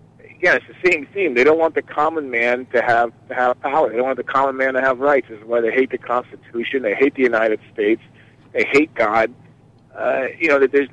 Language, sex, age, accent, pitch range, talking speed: English, male, 50-69, American, 120-140 Hz, 255 wpm